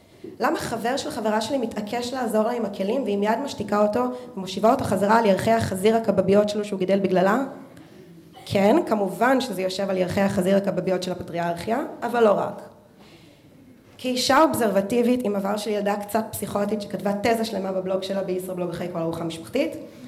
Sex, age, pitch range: female, 20-39, 185-230 Hz